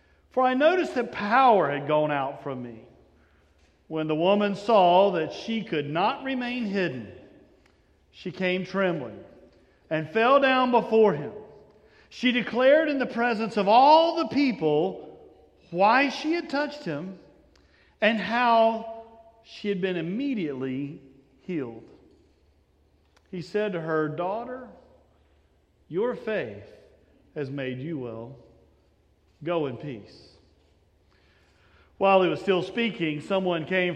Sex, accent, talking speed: male, American, 125 wpm